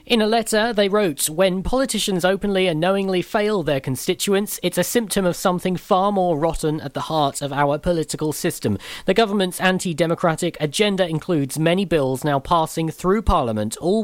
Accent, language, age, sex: British, English, 40-59, male